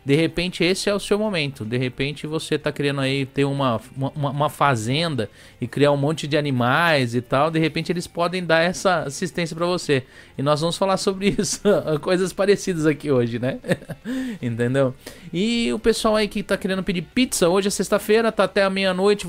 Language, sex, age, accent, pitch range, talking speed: Portuguese, male, 20-39, Brazilian, 145-190 Hz, 195 wpm